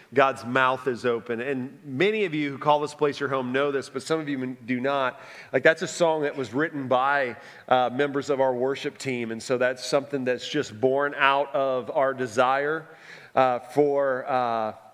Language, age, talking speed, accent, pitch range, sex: English, 40-59, 200 wpm, American, 130-185 Hz, male